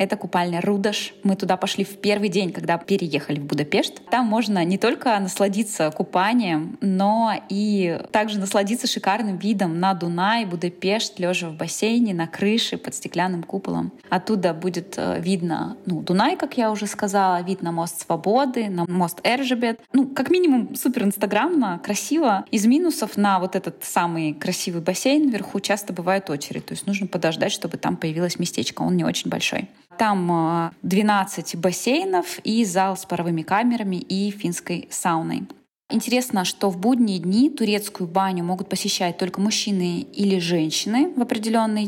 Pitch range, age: 180-225 Hz, 20-39